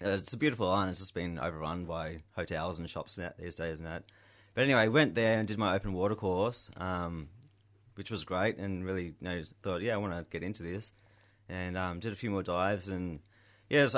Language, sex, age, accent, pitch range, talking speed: English, male, 20-39, Australian, 90-105 Hz, 230 wpm